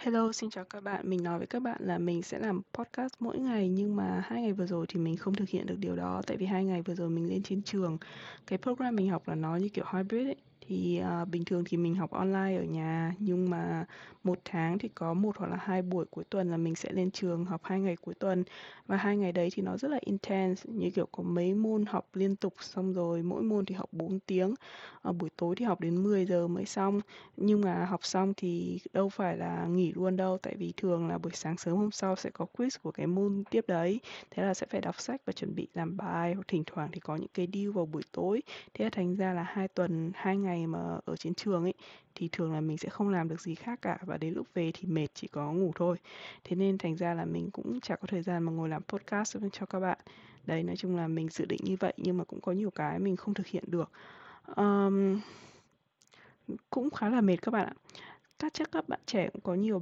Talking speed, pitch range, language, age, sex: 260 wpm, 170-200 Hz, Vietnamese, 20-39, female